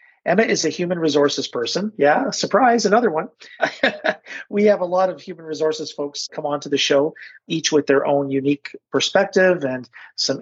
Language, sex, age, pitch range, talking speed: English, male, 40-59, 135-160 Hz, 175 wpm